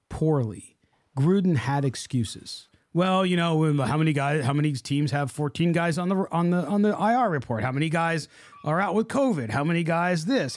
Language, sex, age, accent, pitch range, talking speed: English, male, 30-49, American, 140-190 Hz, 200 wpm